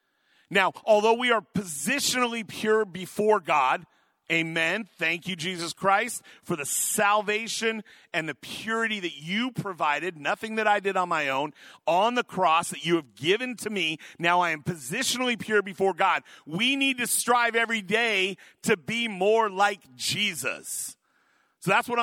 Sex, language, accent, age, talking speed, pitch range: male, English, American, 40-59, 160 wpm, 180-225 Hz